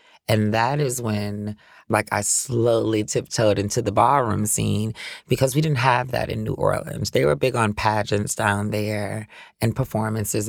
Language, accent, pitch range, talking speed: English, American, 105-130 Hz, 165 wpm